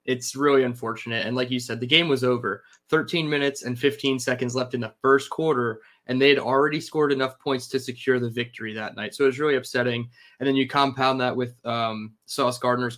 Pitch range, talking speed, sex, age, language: 120-140 Hz, 220 wpm, male, 20-39, English